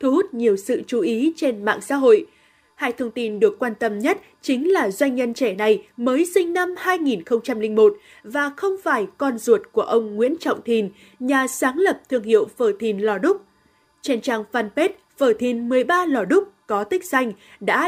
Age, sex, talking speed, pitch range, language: 20-39, female, 195 wpm, 230-335 Hz, Vietnamese